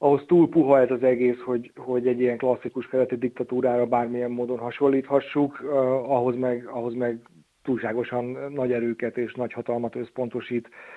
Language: Hungarian